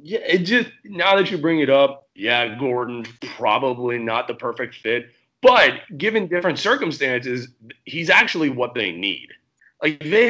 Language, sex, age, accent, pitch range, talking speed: English, male, 30-49, American, 125-165 Hz, 155 wpm